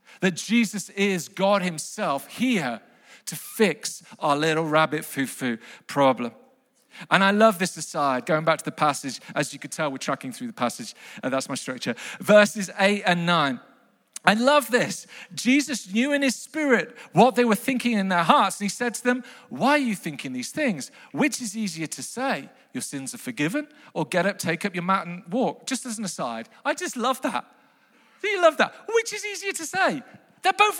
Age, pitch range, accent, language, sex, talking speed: 40-59, 175-285 Hz, British, English, male, 200 wpm